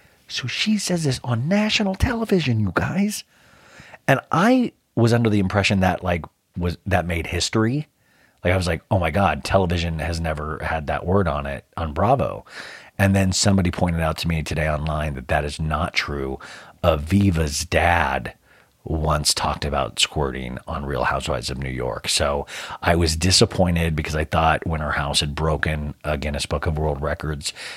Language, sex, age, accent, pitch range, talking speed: English, male, 40-59, American, 80-105 Hz, 175 wpm